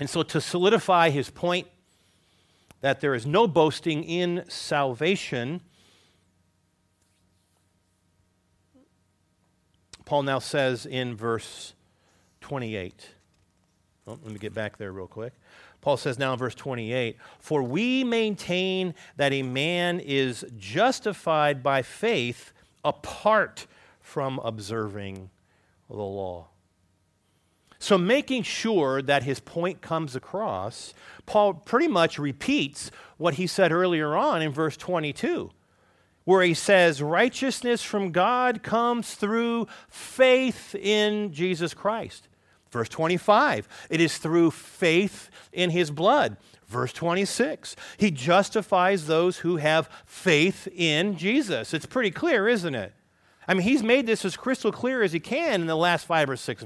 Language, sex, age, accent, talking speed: English, male, 50-69, American, 125 wpm